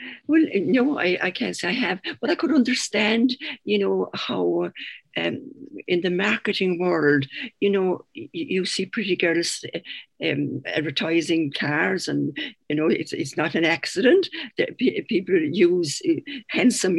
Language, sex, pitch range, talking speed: English, female, 175-295 Hz, 145 wpm